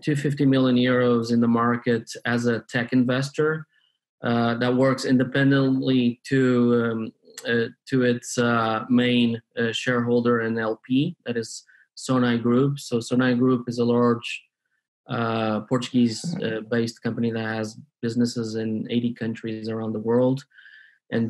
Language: English